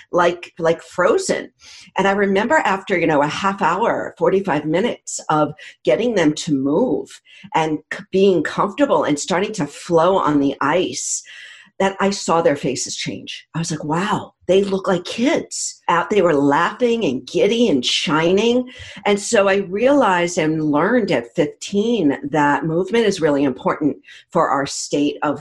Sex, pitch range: female, 150-195 Hz